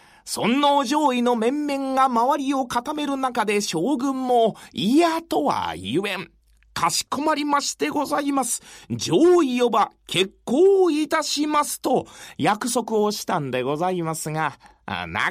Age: 40-59